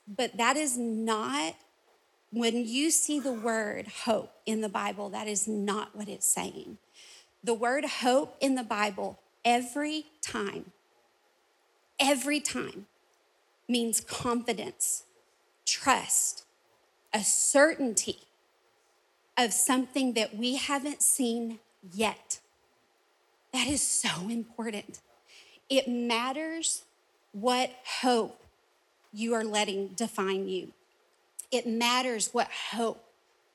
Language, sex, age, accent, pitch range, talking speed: English, female, 30-49, American, 215-265 Hz, 105 wpm